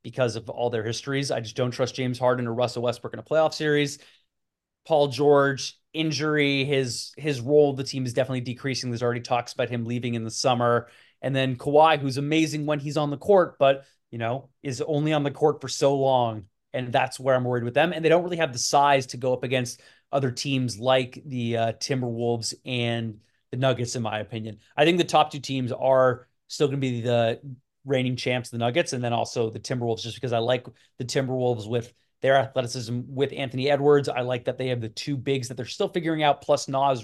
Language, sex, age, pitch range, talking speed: English, male, 30-49, 120-140 Hz, 225 wpm